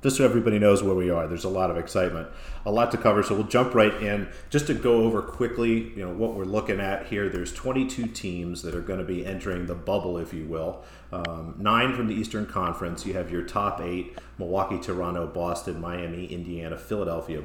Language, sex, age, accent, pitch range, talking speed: English, male, 40-59, American, 85-105 Hz, 220 wpm